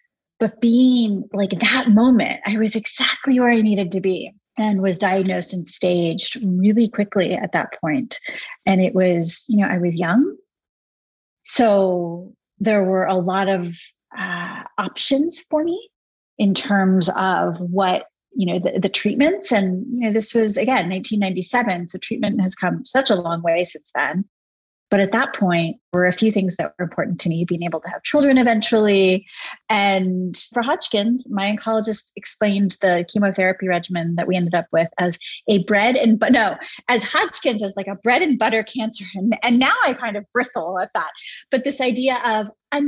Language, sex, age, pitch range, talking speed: English, female, 30-49, 185-260 Hz, 180 wpm